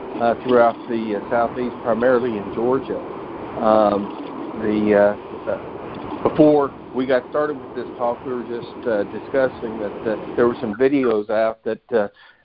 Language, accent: English, American